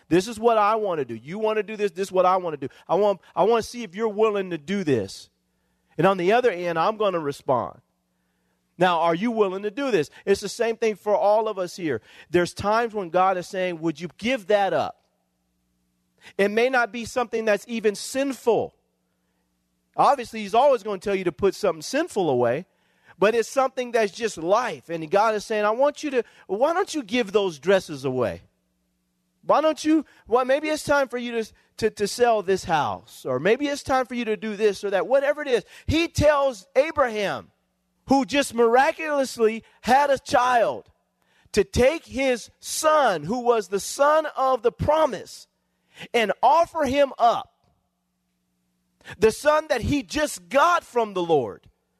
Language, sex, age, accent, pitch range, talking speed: English, male, 40-59, American, 175-255 Hz, 195 wpm